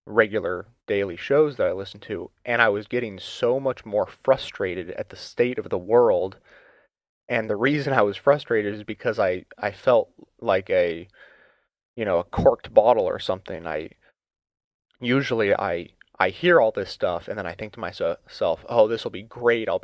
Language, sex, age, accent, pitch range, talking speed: English, male, 30-49, American, 100-125 Hz, 185 wpm